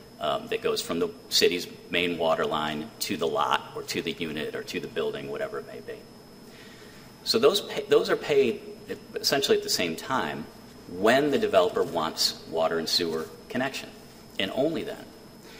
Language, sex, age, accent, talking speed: English, male, 40-59, American, 180 wpm